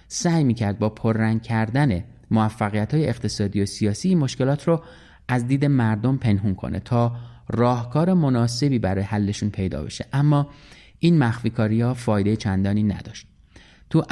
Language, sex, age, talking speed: Persian, male, 30-49, 140 wpm